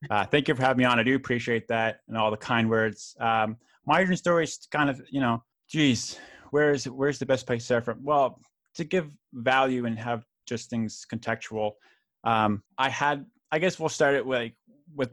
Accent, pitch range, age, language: American, 110-130 Hz, 20-39, English